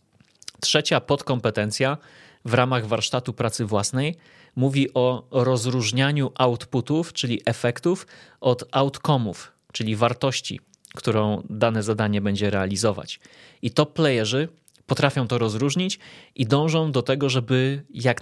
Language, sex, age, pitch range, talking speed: Polish, male, 30-49, 120-145 Hz, 110 wpm